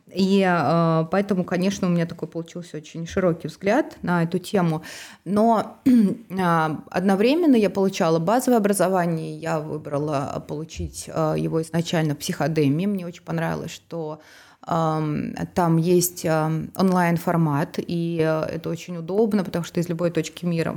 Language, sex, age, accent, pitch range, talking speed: Russian, female, 20-39, native, 165-195 Hz, 135 wpm